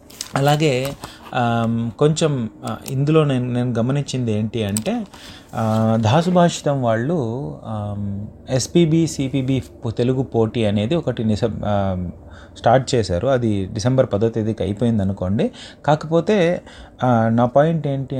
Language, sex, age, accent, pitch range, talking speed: Telugu, male, 30-49, native, 105-140 Hz, 95 wpm